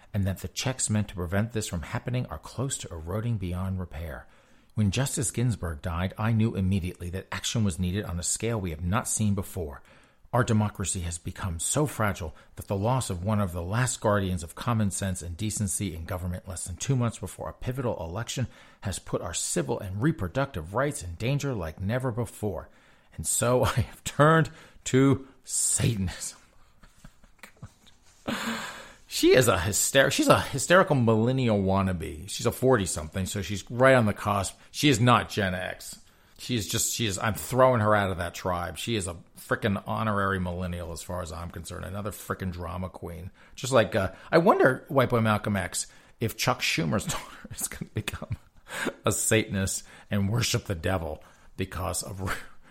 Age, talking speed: 40-59, 185 wpm